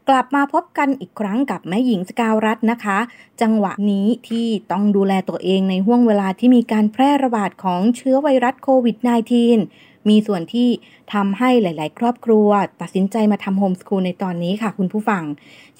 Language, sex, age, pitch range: Thai, female, 20-39, 200-255 Hz